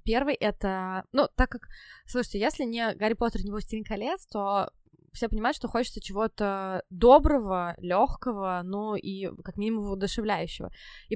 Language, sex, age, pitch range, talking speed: Russian, female, 20-39, 185-215 Hz, 145 wpm